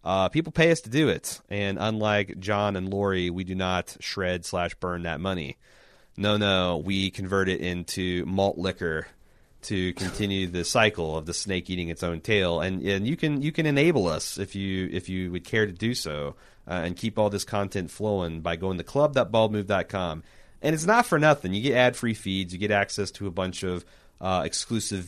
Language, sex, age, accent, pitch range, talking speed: English, male, 30-49, American, 90-115 Hz, 205 wpm